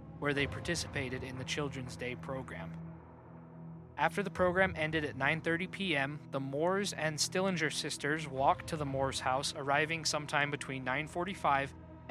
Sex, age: male, 20-39